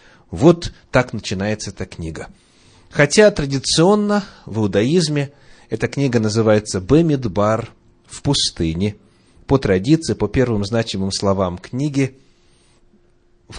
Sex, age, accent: male, 30-49, native